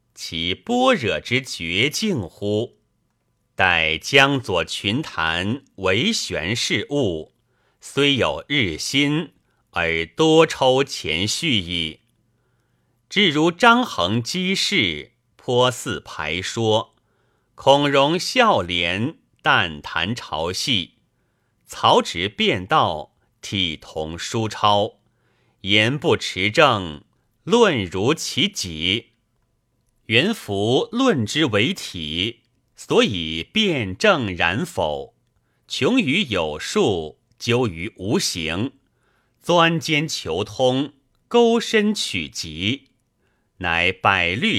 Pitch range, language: 100-150 Hz, Chinese